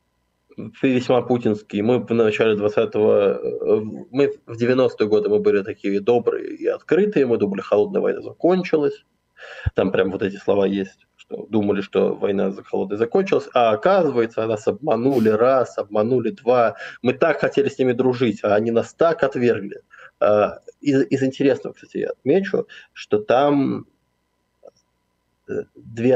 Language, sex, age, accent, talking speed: Russian, male, 20-39, native, 140 wpm